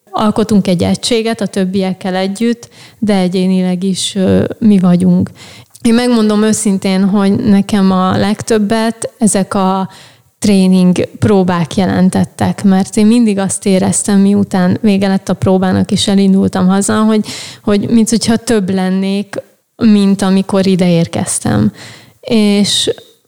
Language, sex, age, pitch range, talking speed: Hungarian, female, 30-49, 190-215 Hz, 120 wpm